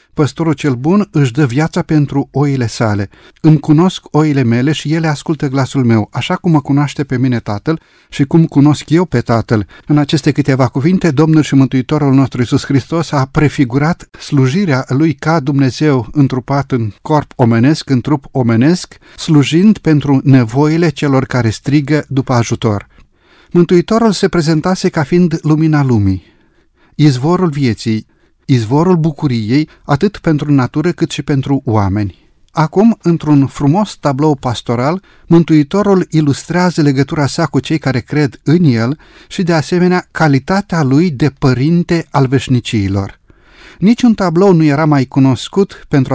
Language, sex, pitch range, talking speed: Romanian, male, 130-160 Hz, 145 wpm